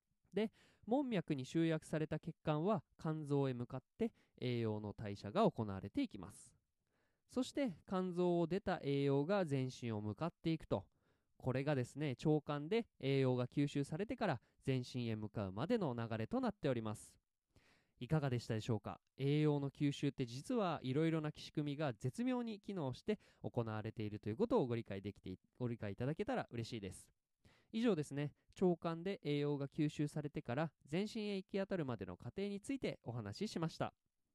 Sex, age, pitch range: male, 20-39, 120-185 Hz